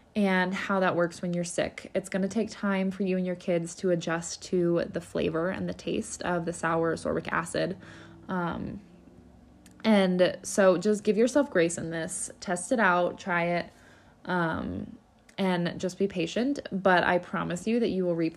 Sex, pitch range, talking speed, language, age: female, 170-195 Hz, 185 wpm, English, 20-39